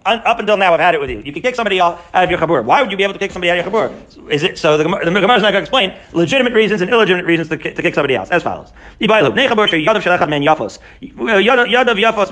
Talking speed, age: 265 wpm, 40-59